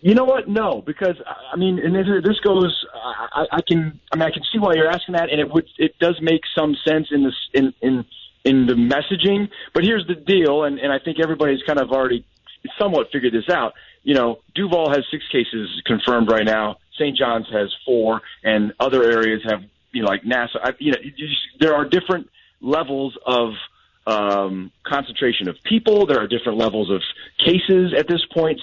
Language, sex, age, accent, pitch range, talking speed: English, male, 30-49, American, 115-170 Hz, 195 wpm